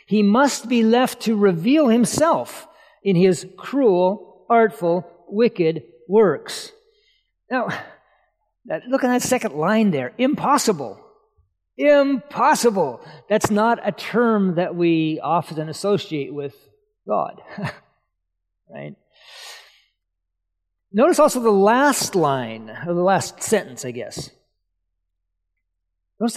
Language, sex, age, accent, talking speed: English, male, 50-69, American, 105 wpm